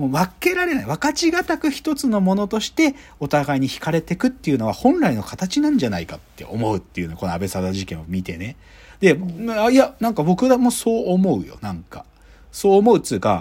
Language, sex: Japanese, male